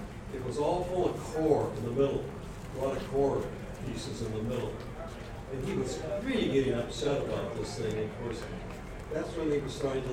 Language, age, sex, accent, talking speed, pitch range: English, 60-79, male, American, 200 wpm, 115-145 Hz